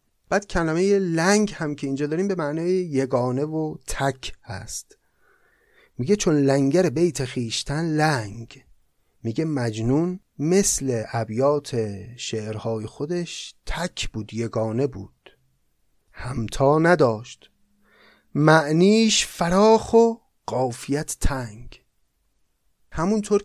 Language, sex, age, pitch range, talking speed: Persian, male, 30-49, 120-180 Hz, 95 wpm